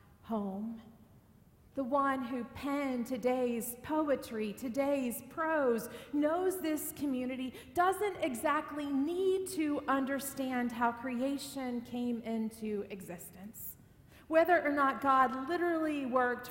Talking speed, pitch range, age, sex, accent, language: 100 wpm, 240-295 Hz, 40-59, female, American, English